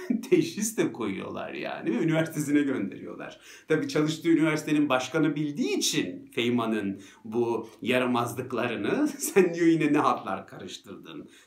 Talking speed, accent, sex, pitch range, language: 115 wpm, native, male, 120-155 Hz, Turkish